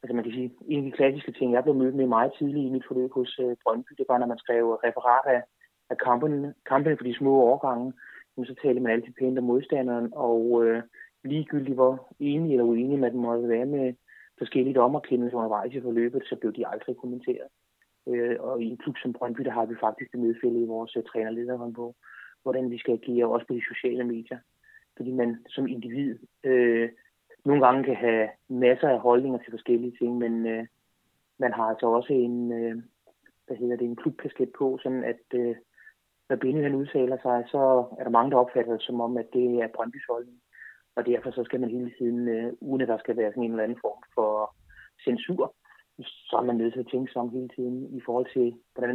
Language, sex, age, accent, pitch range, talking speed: Danish, male, 30-49, native, 120-130 Hz, 210 wpm